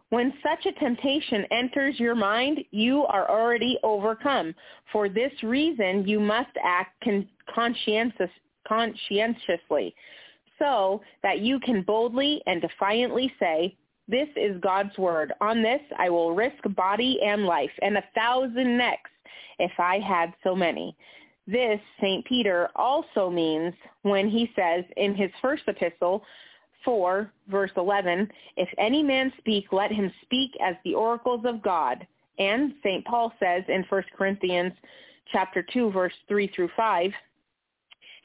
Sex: female